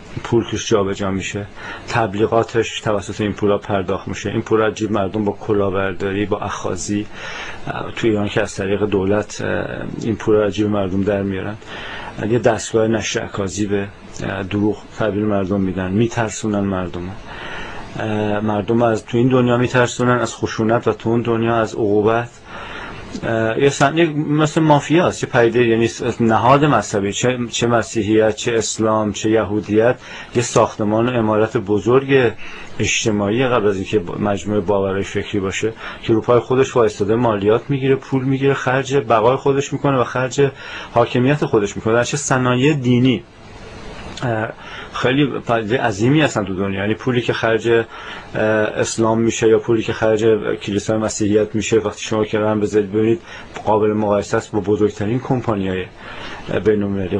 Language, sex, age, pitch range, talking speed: Persian, male, 40-59, 105-120 Hz, 140 wpm